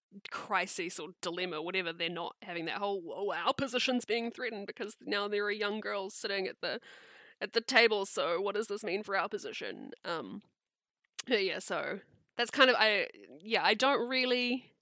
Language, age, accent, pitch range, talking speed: English, 20-39, Australian, 195-275 Hz, 180 wpm